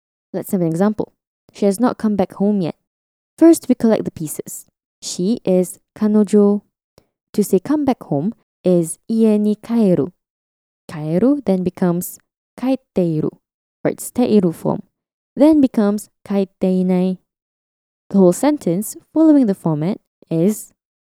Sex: female